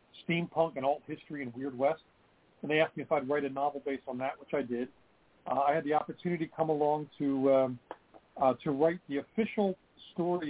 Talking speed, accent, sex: 215 wpm, American, male